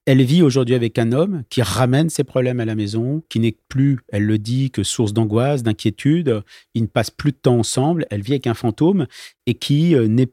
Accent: French